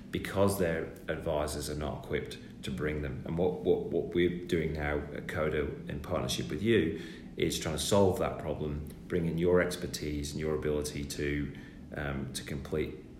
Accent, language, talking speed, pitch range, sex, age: British, English, 175 wpm, 70-85 Hz, male, 30-49